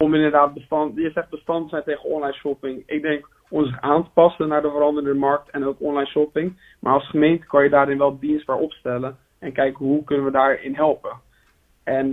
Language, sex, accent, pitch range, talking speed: Dutch, male, Dutch, 140-165 Hz, 210 wpm